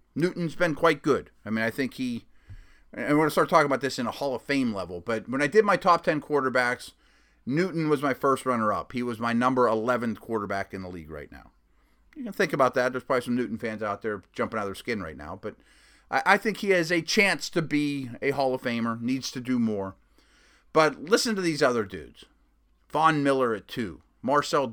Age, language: 30-49, English